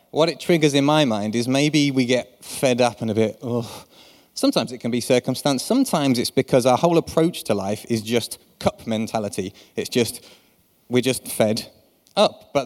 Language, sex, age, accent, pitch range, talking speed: English, male, 30-49, British, 115-140 Hz, 190 wpm